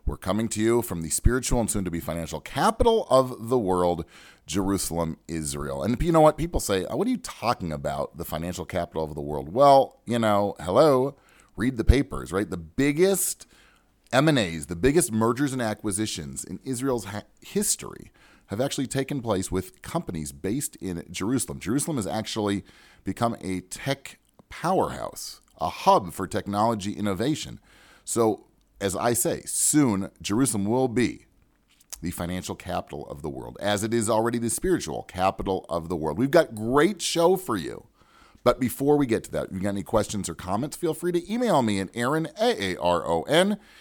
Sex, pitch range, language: male, 90-135 Hz, English